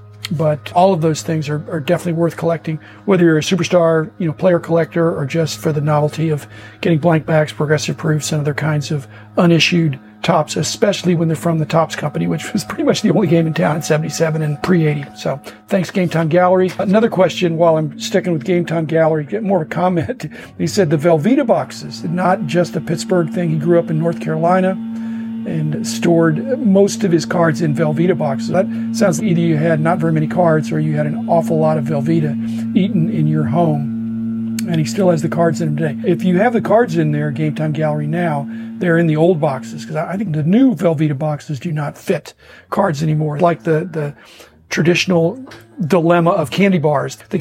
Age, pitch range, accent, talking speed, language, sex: 50-69, 150-180 Hz, American, 215 wpm, English, male